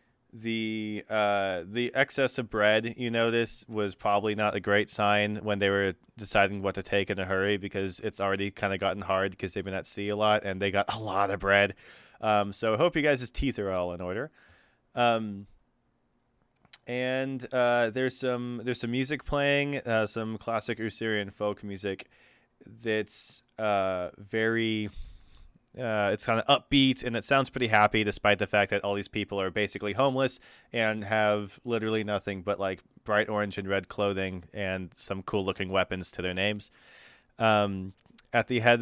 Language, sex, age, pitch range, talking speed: English, male, 20-39, 100-120 Hz, 180 wpm